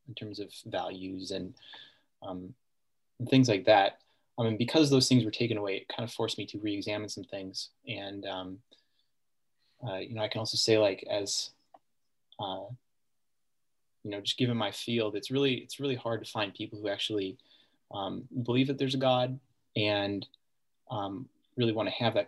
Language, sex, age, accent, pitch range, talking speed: English, male, 20-39, American, 105-125 Hz, 185 wpm